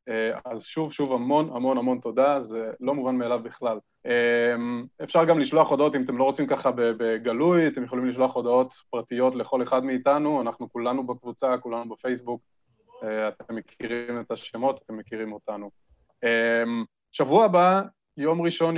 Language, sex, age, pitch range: Hebrew, male, 20-39, 120-165 Hz